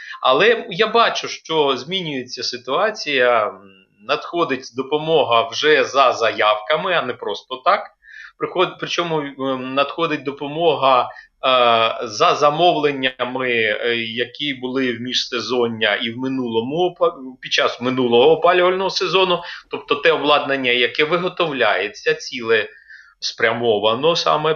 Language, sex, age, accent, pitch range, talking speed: Ukrainian, male, 30-49, native, 125-165 Hz, 100 wpm